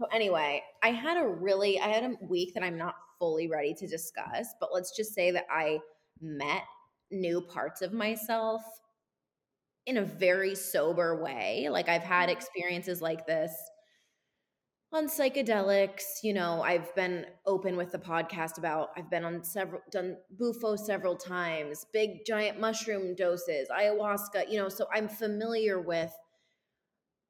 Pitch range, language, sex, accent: 170-215 Hz, English, female, American